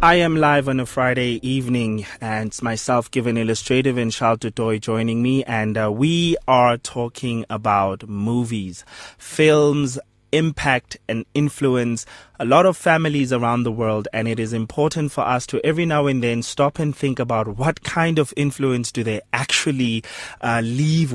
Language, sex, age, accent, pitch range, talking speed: English, male, 30-49, South African, 115-145 Hz, 165 wpm